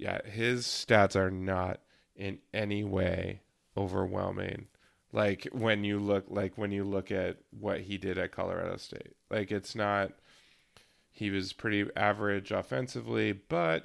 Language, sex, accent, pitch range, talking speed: English, male, American, 95-110 Hz, 145 wpm